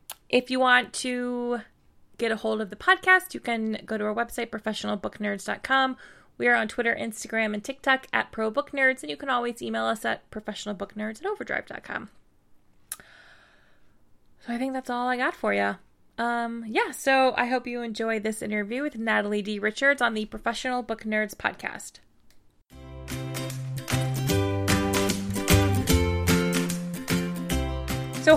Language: English